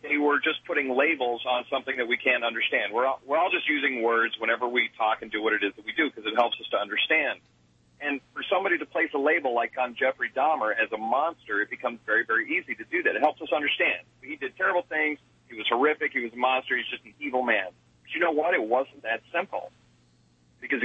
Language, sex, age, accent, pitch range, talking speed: English, male, 40-59, American, 105-140 Hz, 245 wpm